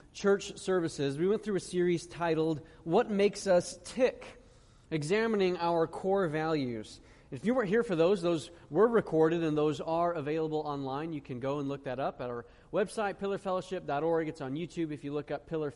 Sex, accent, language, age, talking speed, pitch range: male, American, English, 30-49, 185 wpm, 145-190 Hz